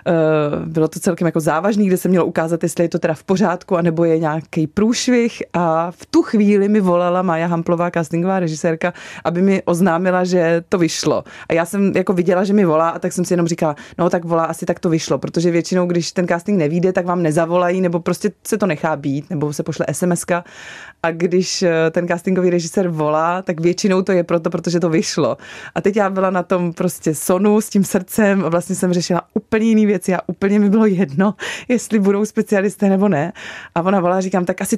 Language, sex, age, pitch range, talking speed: Czech, female, 20-39, 170-205 Hz, 205 wpm